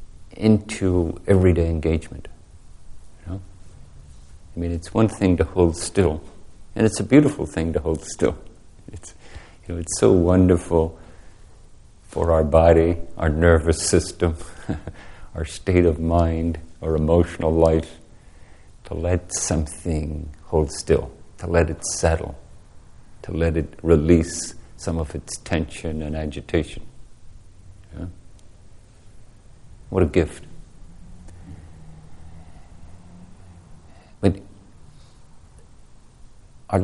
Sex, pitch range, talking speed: male, 80-95 Hz, 105 wpm